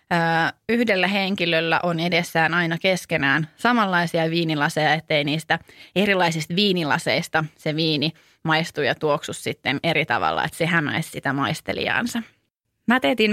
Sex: female